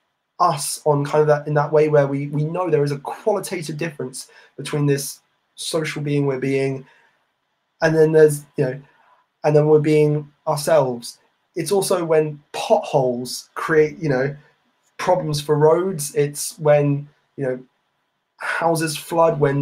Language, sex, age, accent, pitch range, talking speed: English, male, 20-39, British, 140-155 Hz, 155 wpm